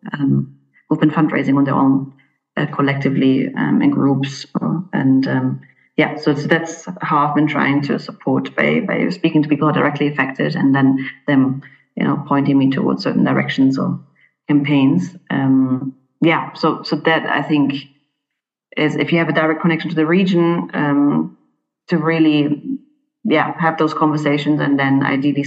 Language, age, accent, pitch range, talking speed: English, 30-49, German, 135-150 Hz, 170 wpm